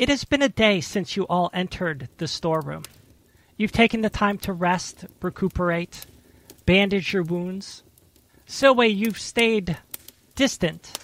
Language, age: English, 40-59